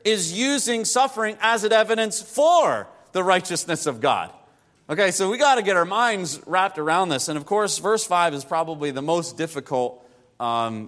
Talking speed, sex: 180 wpm, male